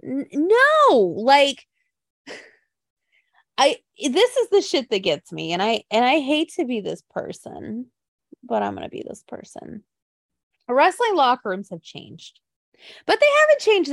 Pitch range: 200-305 Hz